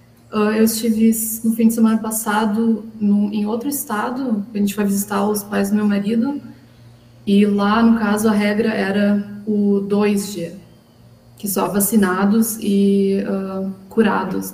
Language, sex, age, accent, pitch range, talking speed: Portuguese, female, 20-39, Brazilian, 190-215 Hz, 145 wpm